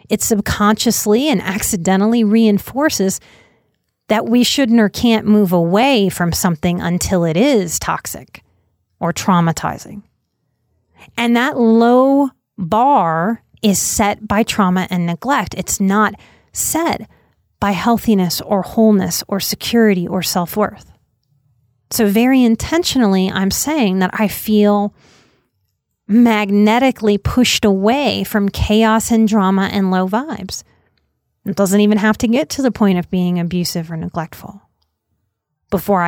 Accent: American